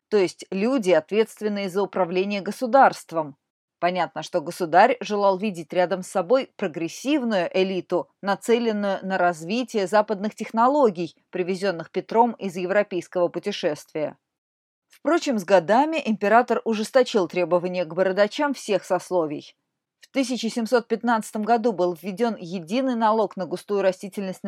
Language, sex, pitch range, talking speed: Russian, female, 180-225 Hz, 115 wpm